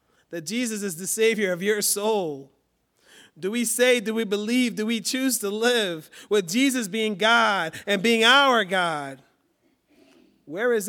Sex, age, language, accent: male, 30-49, English, American